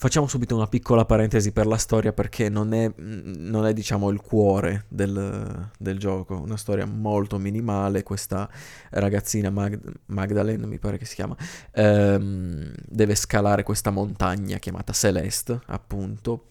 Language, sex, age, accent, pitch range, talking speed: Italian, male, 20-39, native, 100-115 Hz, 140 wpm